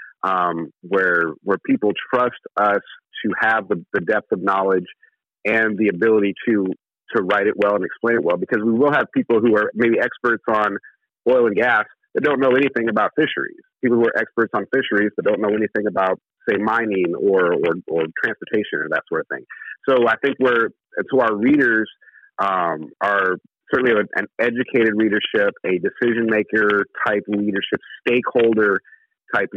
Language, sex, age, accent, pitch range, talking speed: English, male, 40-59, American, 100-130 Hz, 180 wpm